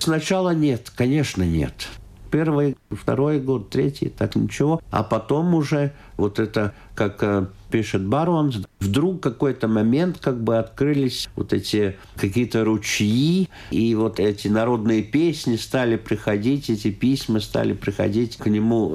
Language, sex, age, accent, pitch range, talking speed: Russian, male, 50-69, native, 105-140 Hz, 130 wpm